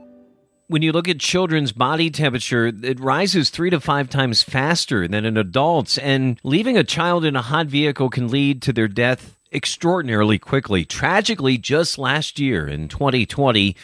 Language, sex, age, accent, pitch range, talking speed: English, male, 40-59, American, 120-155 Hz, 165 wpm